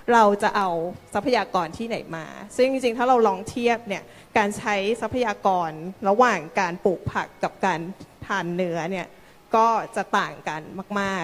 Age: 20-39